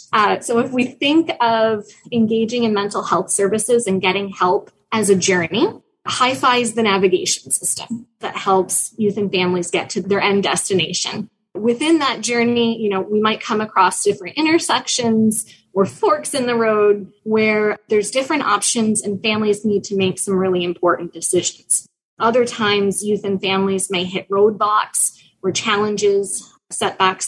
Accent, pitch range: American, 195-240 Hz